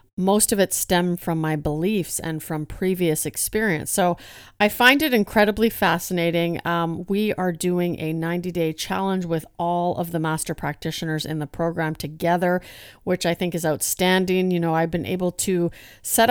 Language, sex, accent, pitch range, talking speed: English, female, American, 165-195 Hz, 170 wpm